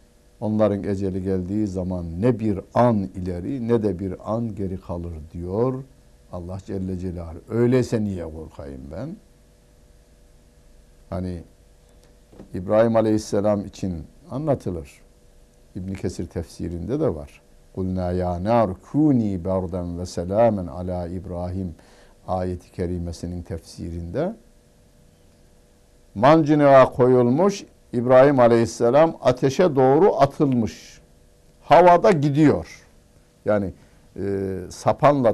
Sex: male